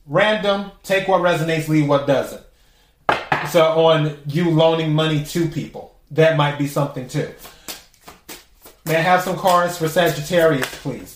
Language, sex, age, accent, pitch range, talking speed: English, male, 30-49, American, 160-185 Hz, 145 wpm